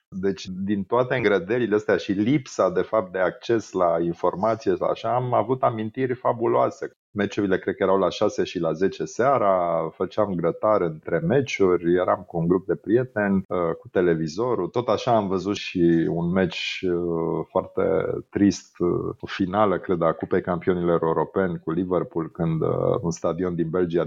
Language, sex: Romanian, male